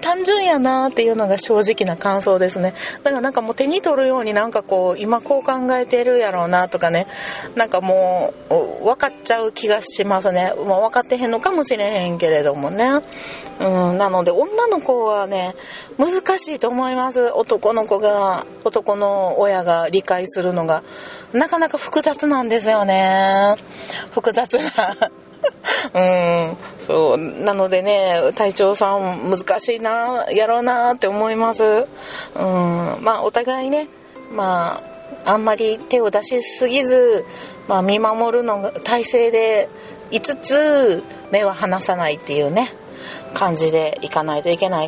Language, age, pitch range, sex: Japanese, 30-49, 185-255 Hz, female